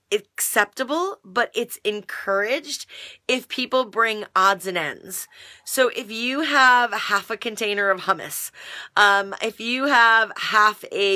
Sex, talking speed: female, 135 wpm